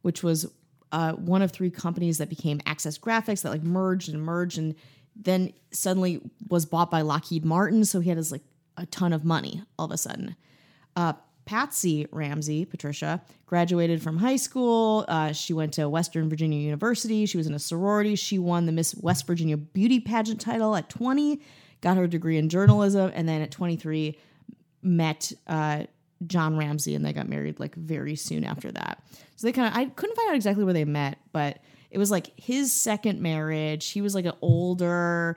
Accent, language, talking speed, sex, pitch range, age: American, English, 195 wpm, female, 155-185 Hz, 30-49